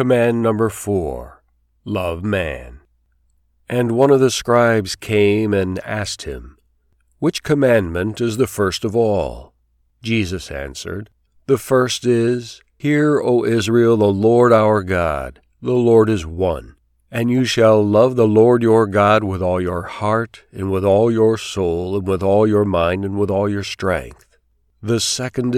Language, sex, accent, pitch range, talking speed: English, male, American, 95-115 Hz, 155 wpm